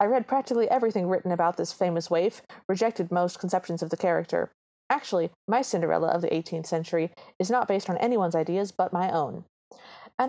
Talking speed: 185 wpm